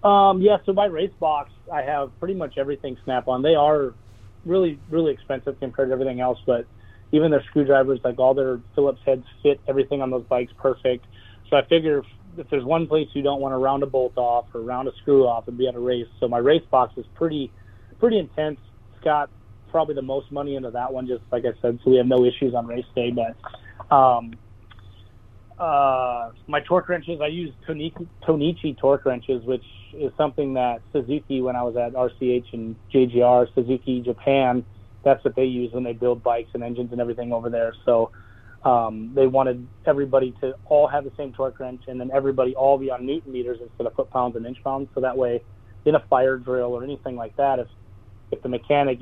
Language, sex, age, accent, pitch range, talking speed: English, male, 30-49, American, 115-140 Hz, 210 wpm